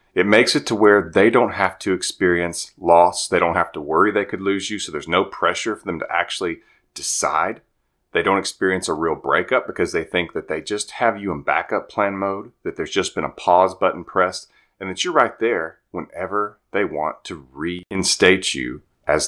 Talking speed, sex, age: 210 wpm, male, 30-49